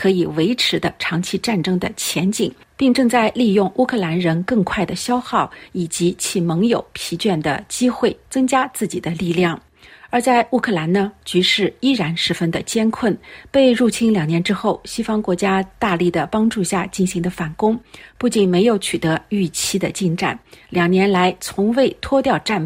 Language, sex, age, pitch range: Chinese, female, 50-69, 180-240 Hz